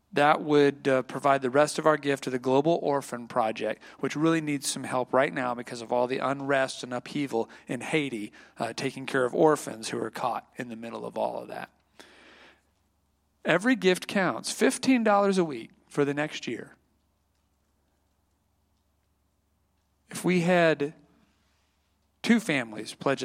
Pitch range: 120-155 Hz